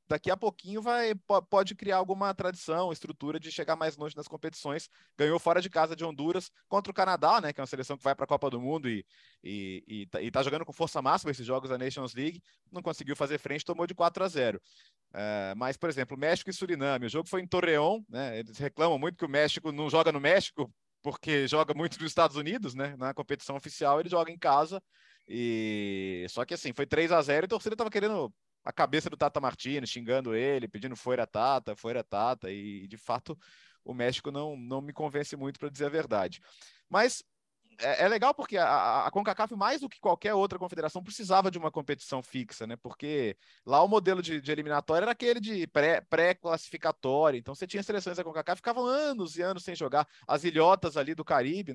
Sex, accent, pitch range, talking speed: male, Brazilian, 140-180 Hz, 215 wpm